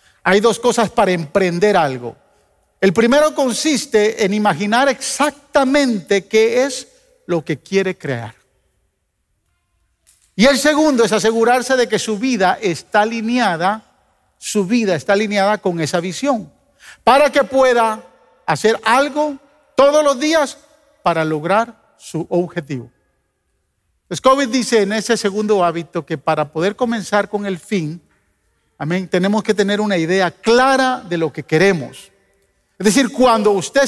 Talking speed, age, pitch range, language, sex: 135 wpm, 50-69, 185-265 Hz, Spanish, male